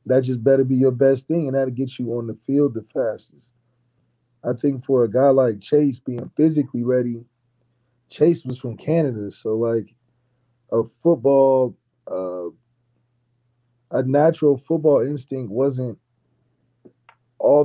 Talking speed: 140 wpm